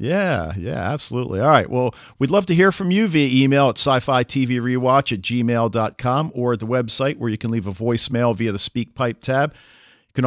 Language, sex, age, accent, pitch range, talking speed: English, male, 50-69, American, 115-145 Hz, 215 wpm